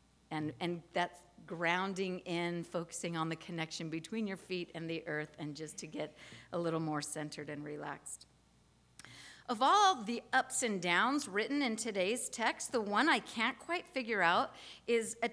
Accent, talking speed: American, 170 wpm